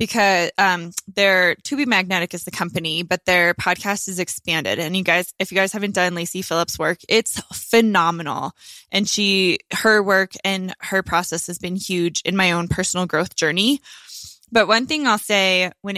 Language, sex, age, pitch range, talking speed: English, female, 20-39, 175-225 Hz, 185 wpm